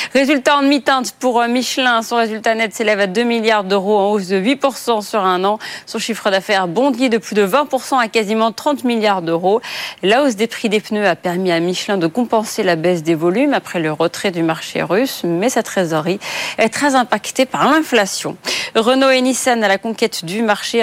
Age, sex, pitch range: 40-59, female, 185-240 Hz